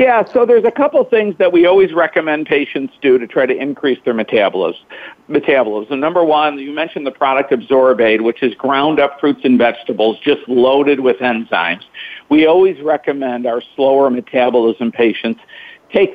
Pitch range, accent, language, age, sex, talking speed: 130-160 Hz, American, English, 50-69, male, 160 wpm